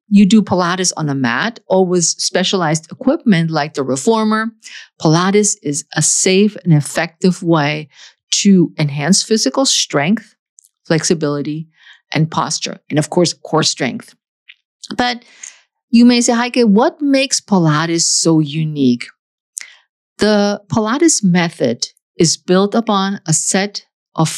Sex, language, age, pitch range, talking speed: female, English, 50-69, 155-215 Hz, 125 wpm